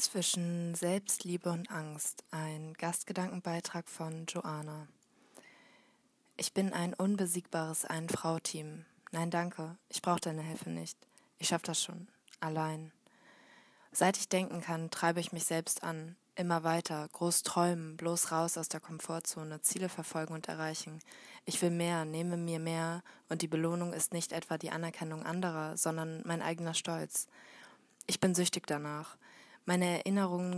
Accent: German